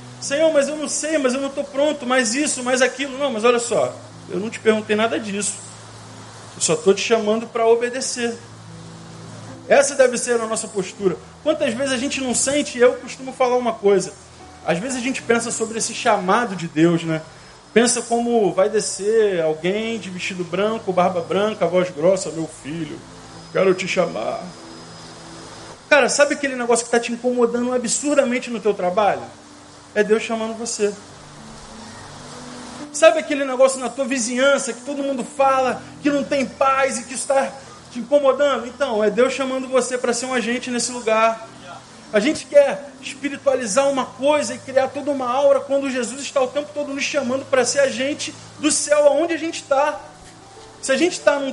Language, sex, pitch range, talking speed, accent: Portuguese, male, 215-275 Hz, 180 wpm, Brazilian